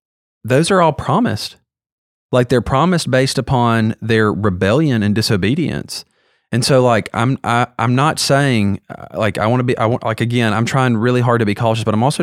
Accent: American